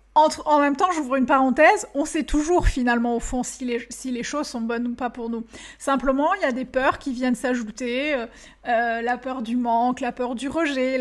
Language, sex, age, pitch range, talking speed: French, female, 30-49, 245-290 Hz, 230 wpm